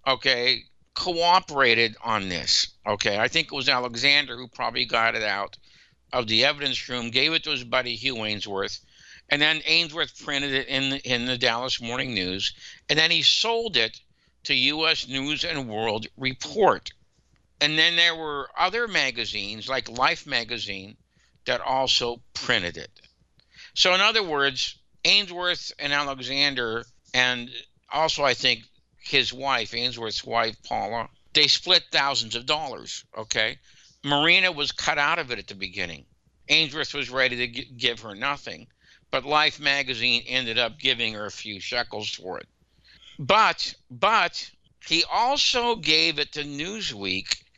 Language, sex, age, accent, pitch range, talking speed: English, male, 60-79, American, 120-155 Hz, 150 wpm